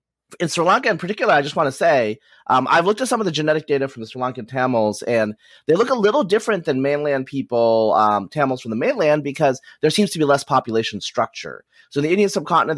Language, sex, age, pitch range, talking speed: English, male, 30-49, 115-155 Hz, 240 wpm